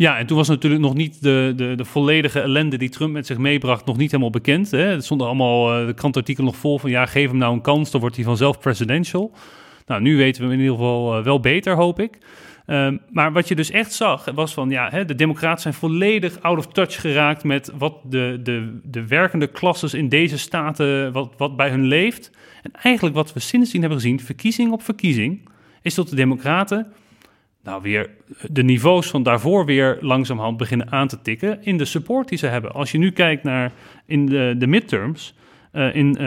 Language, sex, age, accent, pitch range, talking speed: Dutch, male, 40-59, Dutch, 130-165 Hz, 220 wpm